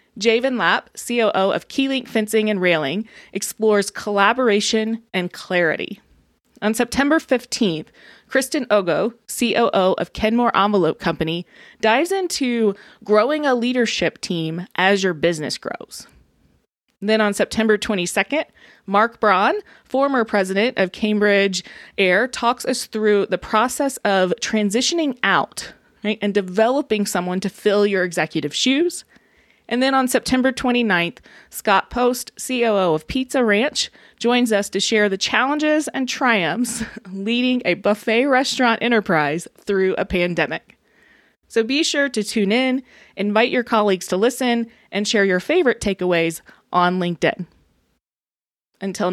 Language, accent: English, American